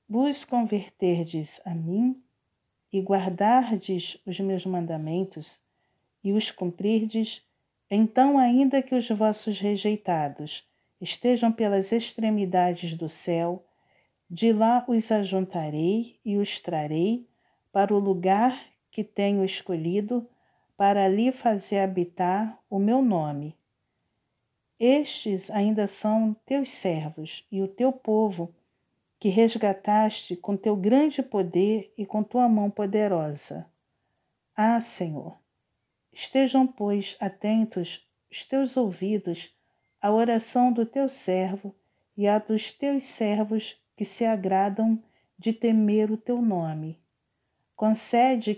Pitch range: 185-225 Hz